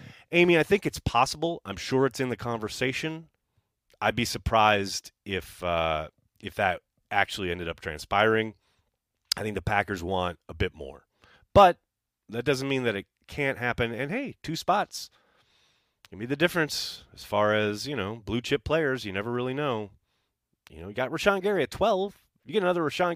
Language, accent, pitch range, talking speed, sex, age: English, American, 90-130 Hz, 180 wpm, male, 30-49